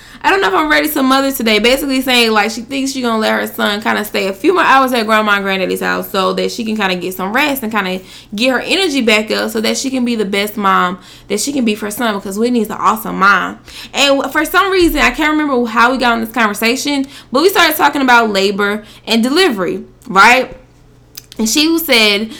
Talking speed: 255 wpm